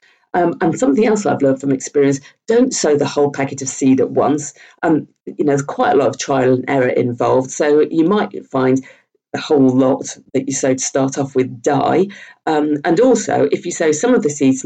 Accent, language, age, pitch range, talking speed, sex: British, English, 50-69, 130-185 Hz, 220 wpm, female